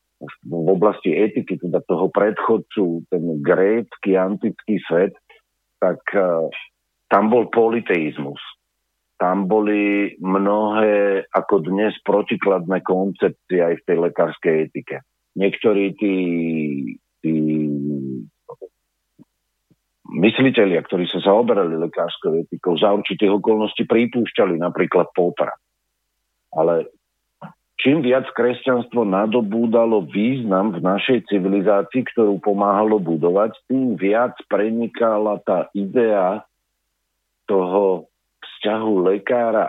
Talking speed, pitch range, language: 95 wpm, 90-110 Hz, Slovak